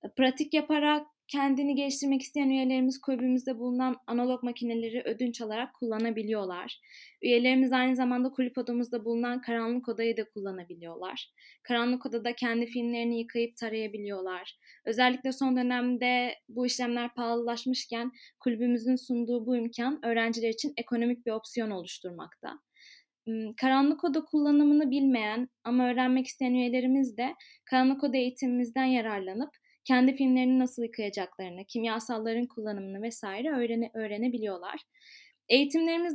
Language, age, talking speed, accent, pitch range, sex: Turkish, 20-39, 115 wpm, native, 230-265 Hz, female